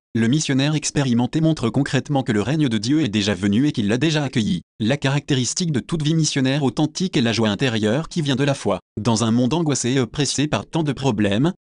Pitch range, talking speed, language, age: 115-150 Hz, 225 wpm, French, 30-49